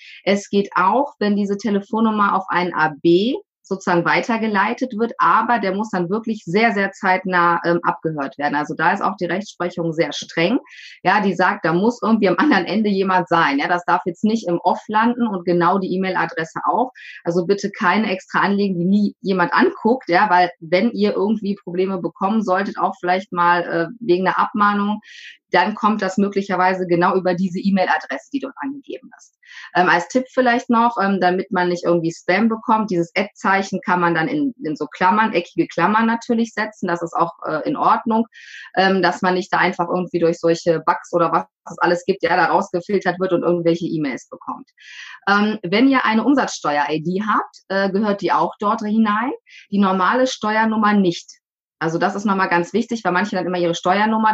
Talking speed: 190 wpm